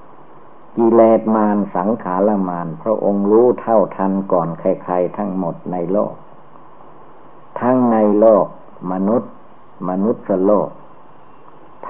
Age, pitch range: 60-79, 95-105 Hz